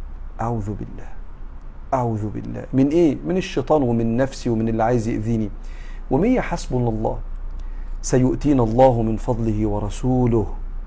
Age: 50-69